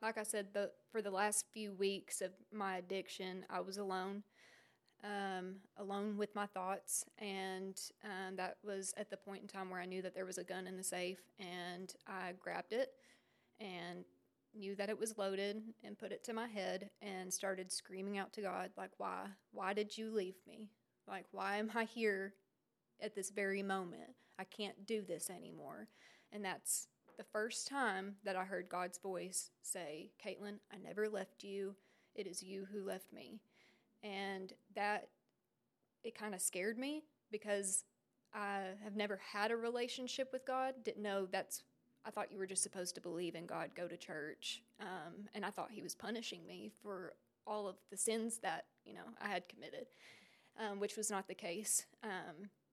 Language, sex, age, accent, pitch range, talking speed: English, female, 20-39, American, 185-215 Hz, 185 wpm